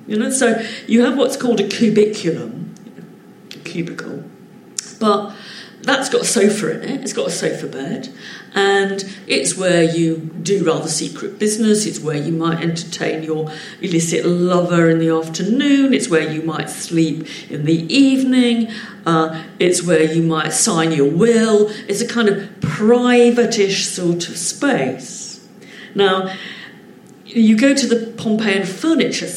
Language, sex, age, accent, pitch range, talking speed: English, female, 50-69, British, 175-245 Hz, 150 wpm